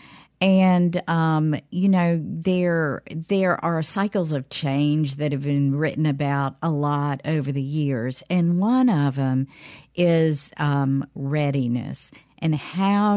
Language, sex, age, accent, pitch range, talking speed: English, female, 50-69, American, 140-190 Hz, 130 wpm